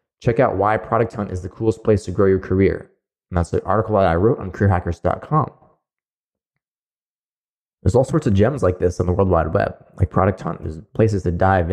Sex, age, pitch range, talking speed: male, 20-39, 85-105 Hz, 210 wpm